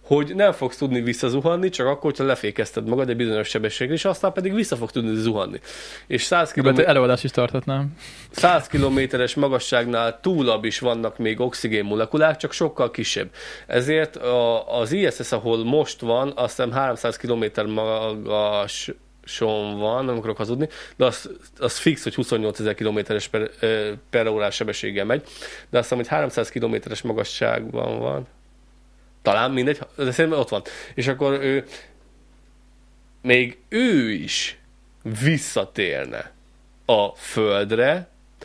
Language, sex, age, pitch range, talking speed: Hungarian, male, 20-39, 110-135 Hz, 125 wpm